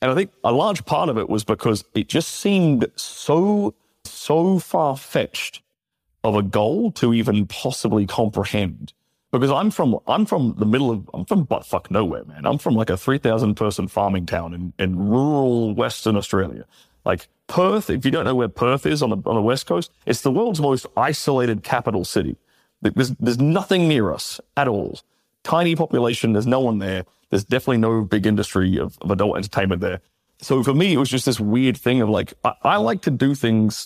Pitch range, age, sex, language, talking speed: 105-140 Hz, 30-49, male, English, 195 wpm